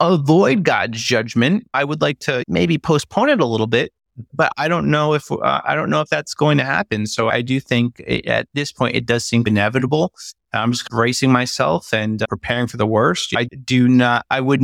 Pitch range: 110-125 Hz